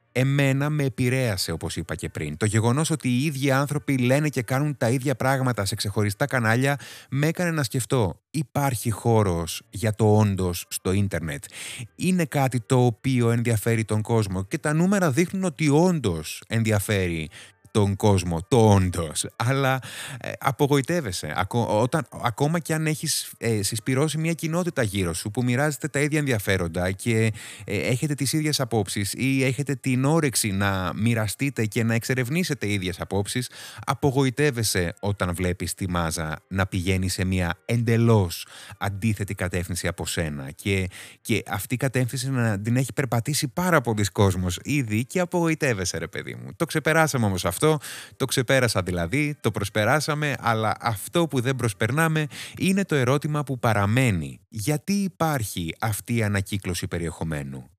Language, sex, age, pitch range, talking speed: Greek, male, 30-49, 95-140 Hz, 150 wpm